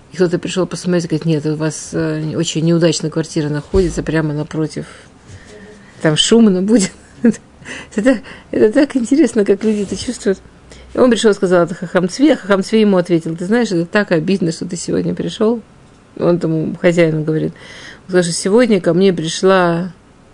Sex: female